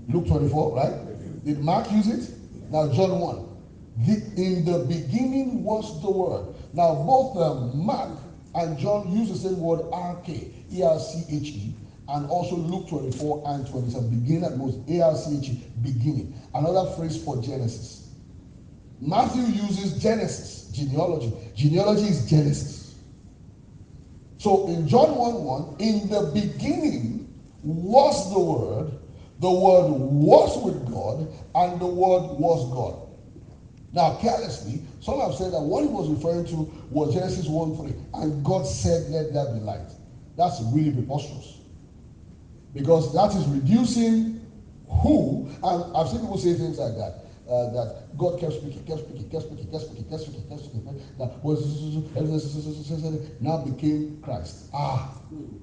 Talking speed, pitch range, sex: 145 wpm, 130-175 Hz, male